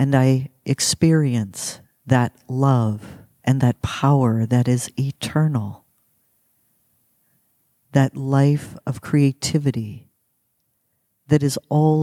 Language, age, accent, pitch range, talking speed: English, 50-69, American, 120-155 Hz, 90 wpm